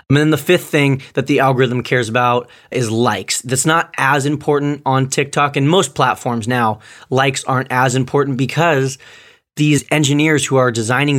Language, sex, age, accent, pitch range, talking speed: English, male, 20-39, American, 120-150 Hz, 170 wpm